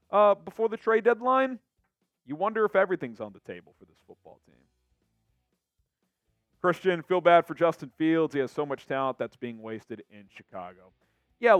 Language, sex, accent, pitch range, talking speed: English, male, American, 115-170 Hz, 170 wpm